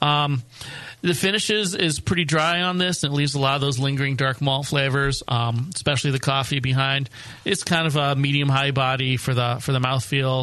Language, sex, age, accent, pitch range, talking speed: English, male, 40-59, American, 125-145 Hz, 200 wpm